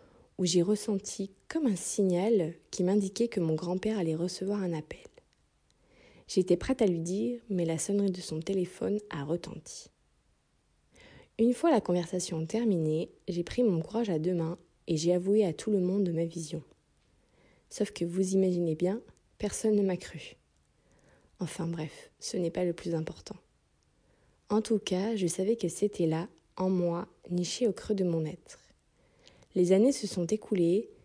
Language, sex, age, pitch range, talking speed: French, female, 20-39, 175-205 Hz, 170 wpm